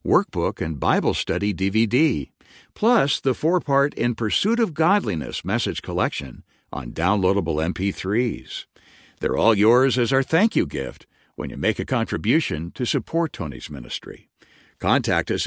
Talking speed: 135 wpm